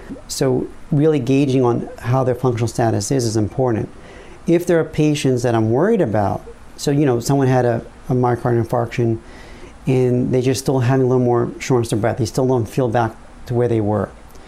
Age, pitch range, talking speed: 40-59, 120-135 Hz, 200 wpm